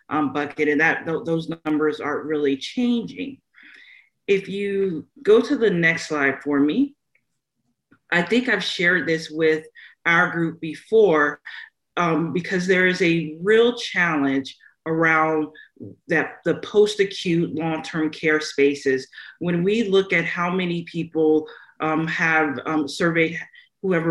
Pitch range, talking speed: 155-185 Hz, 140 wpm